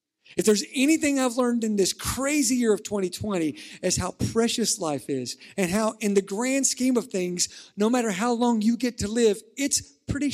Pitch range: 170-245 Hz